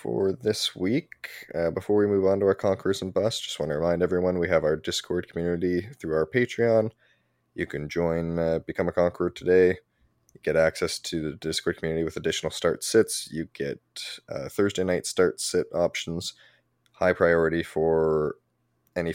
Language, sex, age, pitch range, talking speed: English, male, 20-39, 80-95 Hz, 180 wpm